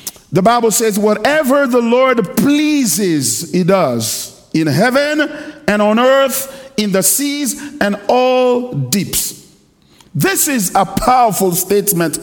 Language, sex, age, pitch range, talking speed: English, male, 50-69, 190-255 Hz, 125 wpm